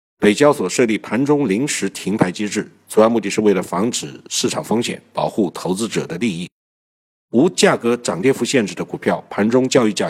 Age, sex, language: 50-69, male, Chinese